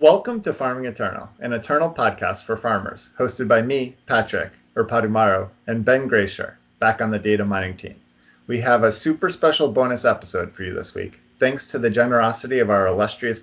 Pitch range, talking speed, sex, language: 105-145 Hz, 190 wpm, male, English